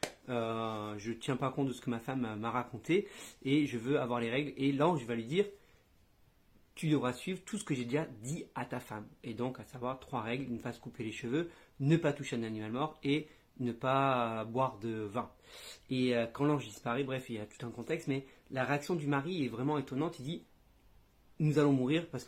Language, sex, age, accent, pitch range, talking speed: French, male, 30-49, French, 125-160 Hz, 235 wpm